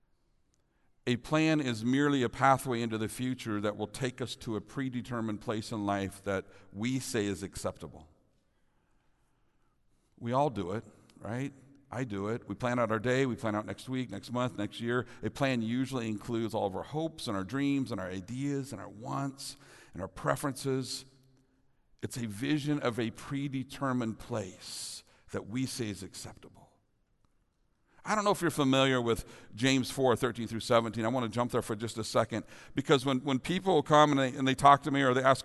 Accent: American